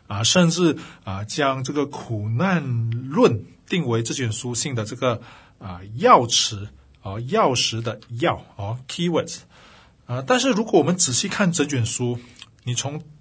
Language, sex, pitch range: Chinese, male, 115-160 Hz